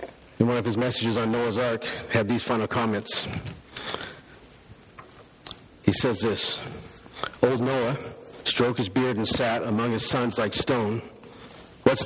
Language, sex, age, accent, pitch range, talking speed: English, male, 50-69, American, 115-135 Hz, 140 wpm